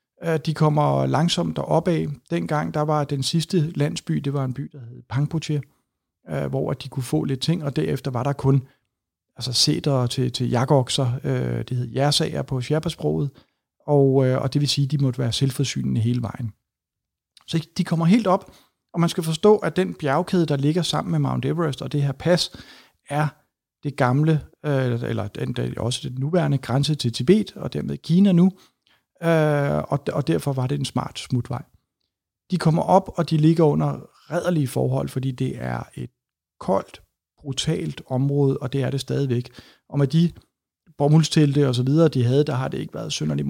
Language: Danish